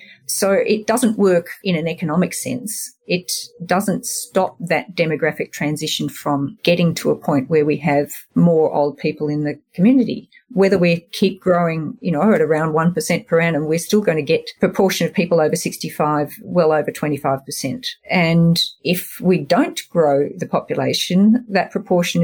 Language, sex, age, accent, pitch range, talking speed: English, female, 40-59, Australian, 160-205 Hz, 165 wpm